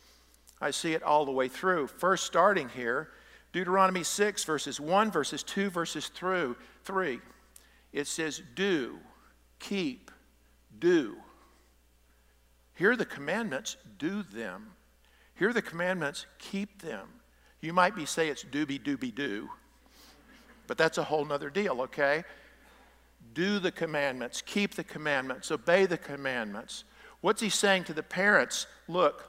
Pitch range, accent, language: 130-180 Hz, American, English